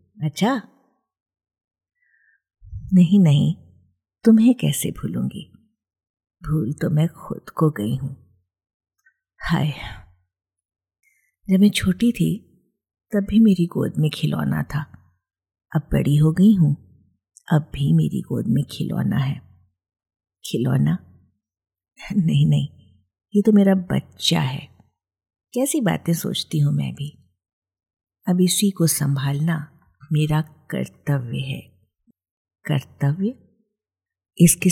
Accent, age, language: native, 50-69, Hindi